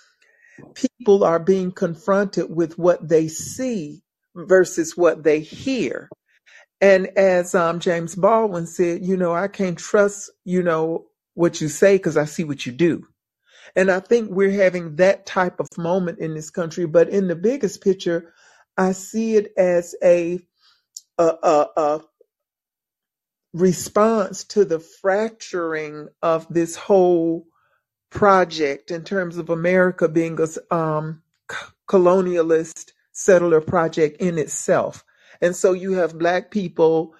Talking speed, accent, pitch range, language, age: 135 wpm, American, 160-190 Hz, English, 50-69